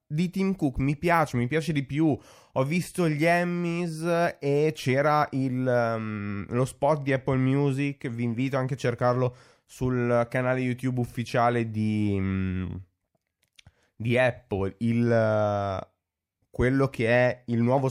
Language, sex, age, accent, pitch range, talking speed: Italian, male, 20-39, native, 115-150 Hz, 140 wpm